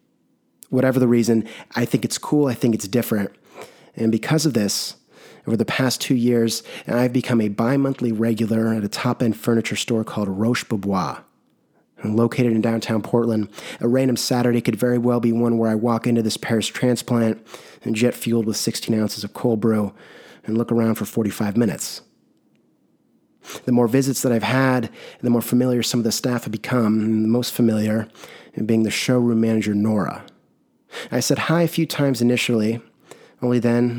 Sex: male